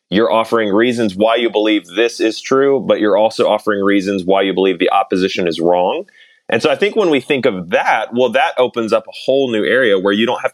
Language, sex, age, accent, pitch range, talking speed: English, male, 30-49, American, 100-125 Hz, 240 wpm